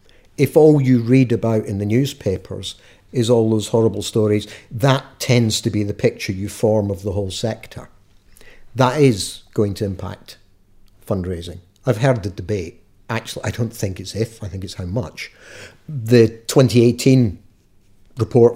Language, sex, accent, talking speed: English, male, British, 160 wpm